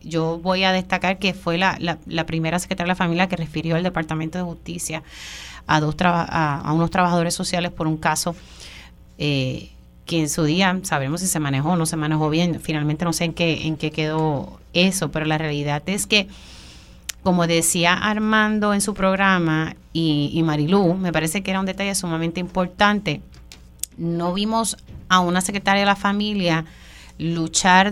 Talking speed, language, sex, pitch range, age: 185 wpm, Spanish, female, 155-190 Hz, 30-49